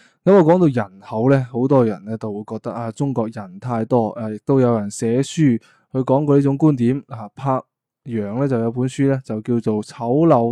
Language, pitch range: Chinese, 115-140 Hz